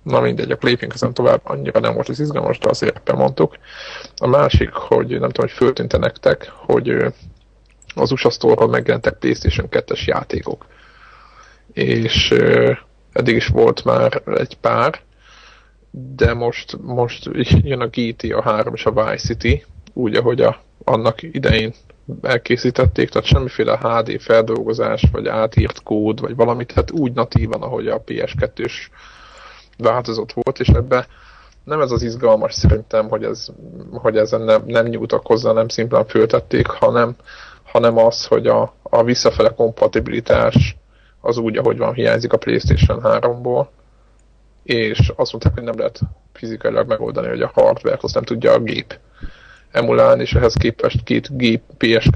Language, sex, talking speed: Hungarian, male, 150 wpm